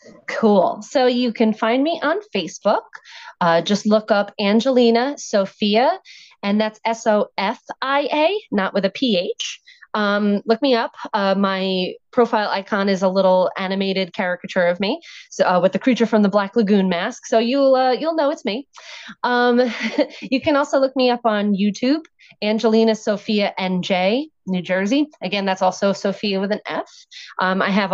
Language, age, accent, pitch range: English, 30-49, American, 185-245 Hz